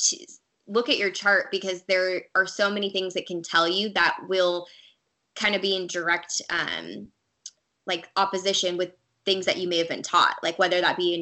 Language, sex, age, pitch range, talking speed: English, female, 20-39, 170-195 Hz, 205 wpm